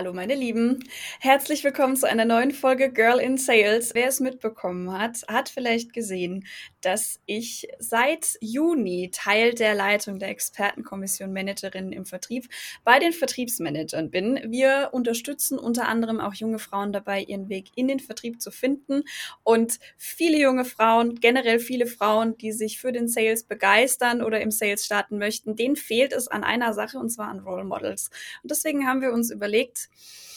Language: German